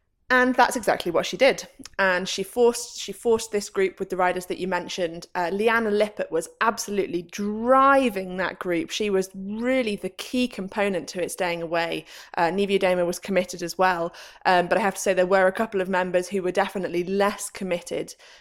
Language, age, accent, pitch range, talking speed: English, 20-39, British, 175-215 Hz, 200 wpm